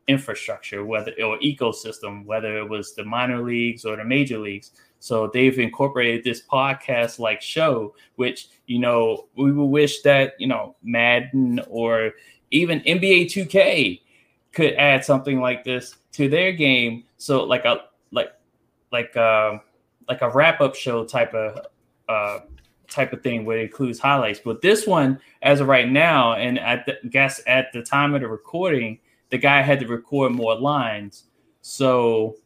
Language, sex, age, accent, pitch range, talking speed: English, male, 20-39, American, 115-150 Hz, 160 wpm